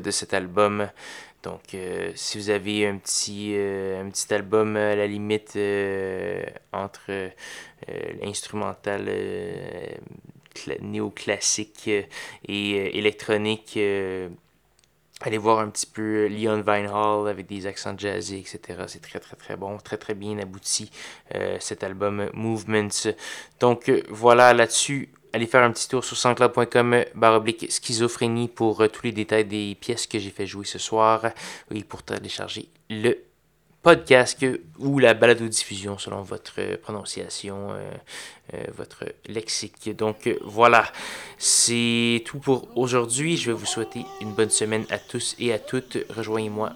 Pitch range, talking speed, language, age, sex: 100-120 Hz, 155 wpm, French, 20-39, male